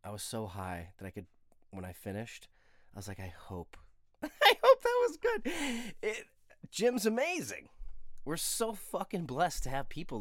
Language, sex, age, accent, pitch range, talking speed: English, male, 30-49, American, 100-130 Hz, 170 wpm